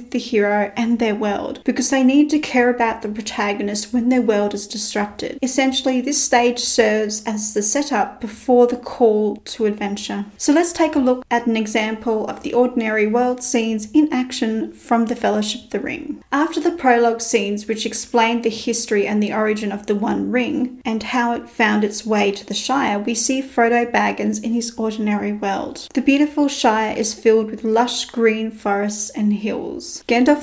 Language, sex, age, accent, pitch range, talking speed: English, female, 30-49, Australian, 215-255 Hz, 185 wpm